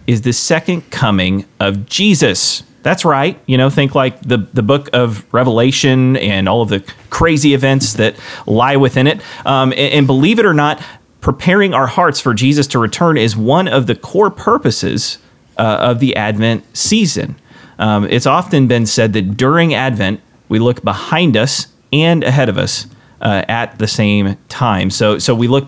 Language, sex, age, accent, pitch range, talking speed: English, male, 30-49, American, 110-140 Hz, 180 wpm